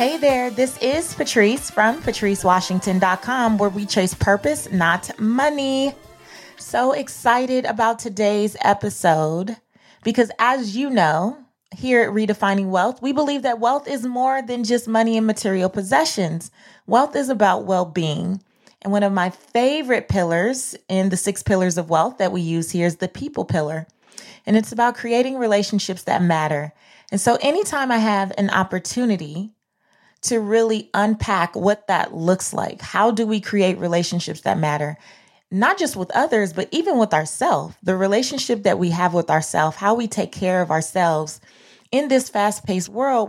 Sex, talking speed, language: female, 160 wpm, English